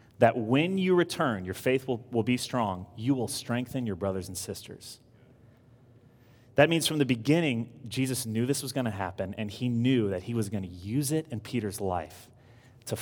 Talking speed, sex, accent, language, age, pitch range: 200 wpm, male, American, English, 30-49, 105-125 Hz